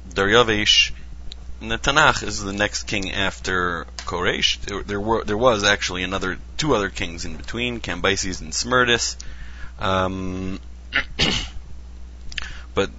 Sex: male